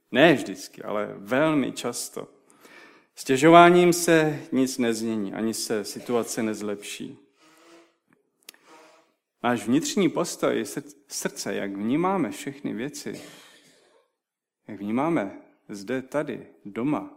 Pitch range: 115-145 Hz